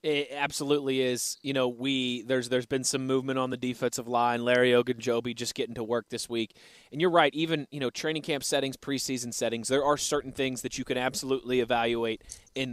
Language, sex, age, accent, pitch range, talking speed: English, male, 20-39, American, 120-150 Hz, 210 wpm